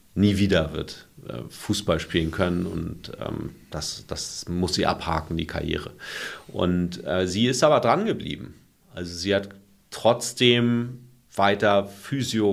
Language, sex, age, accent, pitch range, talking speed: German, male, 40-59, German, 85-100 Hz, 140 wpm